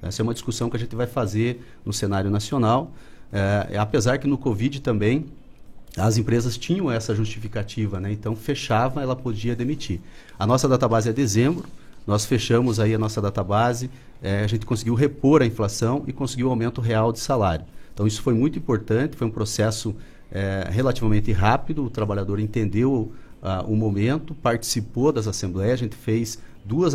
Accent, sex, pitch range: Brazilian, male, 110-130 Hz